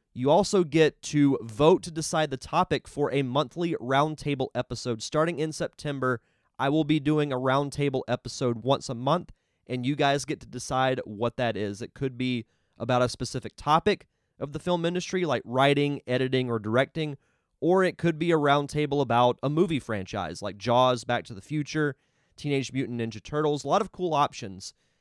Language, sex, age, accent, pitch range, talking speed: English, male, 30-49, American, 120-155 Hz, 185 wpm